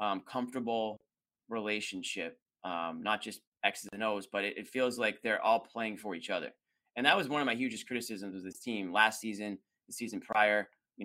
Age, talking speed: 20-39, 200 wpm